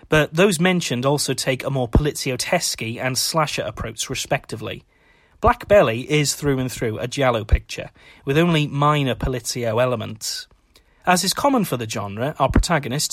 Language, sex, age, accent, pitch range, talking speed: English, male, 30-49, British, 130-170 Hz, 155 wpm